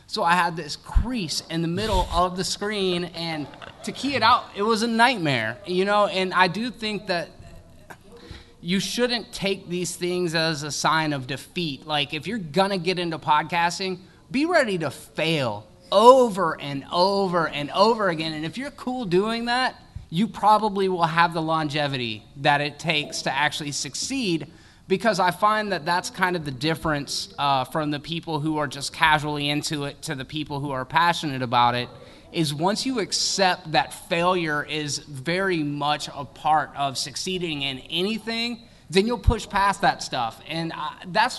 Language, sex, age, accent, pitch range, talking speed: English, male, 20-39, American, 145-185 Hz, 180 wpm